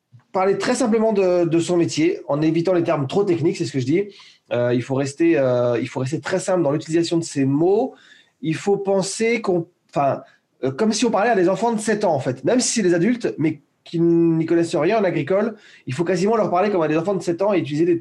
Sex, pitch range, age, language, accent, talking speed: male, 145-195 Hz, 30-49, French, French, 255 wpm